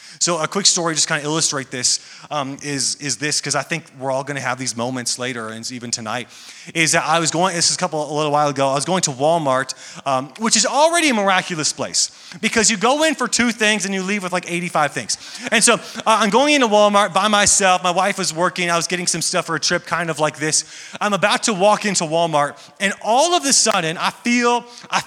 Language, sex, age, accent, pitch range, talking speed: English, male, 30-49, American, 150-200 Hz, 250 wpm